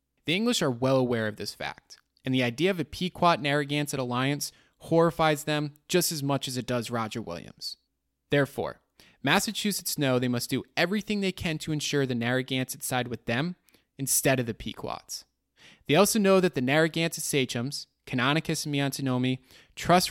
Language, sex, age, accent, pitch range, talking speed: English, male, 20-39, American, 125-155 Hz, 165 wpm